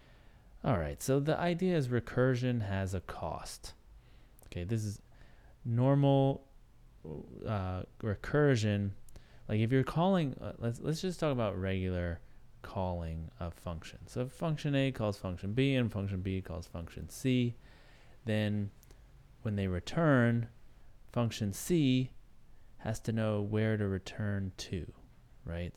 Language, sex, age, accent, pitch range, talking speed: English, male, 20-39, American, 95-120 Hz, 130 wpm